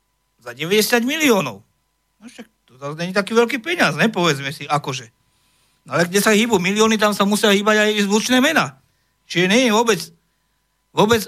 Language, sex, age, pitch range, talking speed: Slovak, male, 50-69, 155-210 Hz, 165 wpm